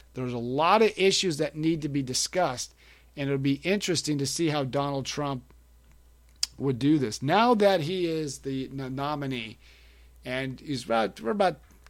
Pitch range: 125-155 Hz